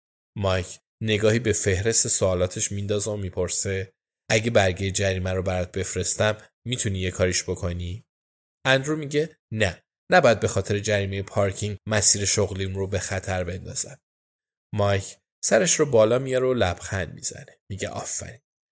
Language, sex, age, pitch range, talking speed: Persian, male, 10-29, 100-130 Hz, 135 wpm